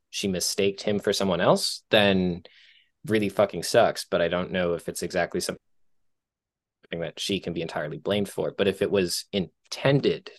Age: 20-39